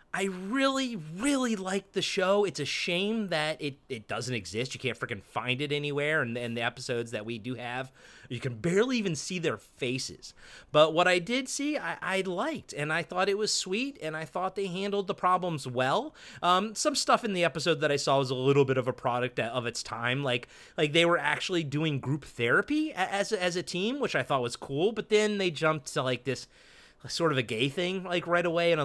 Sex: male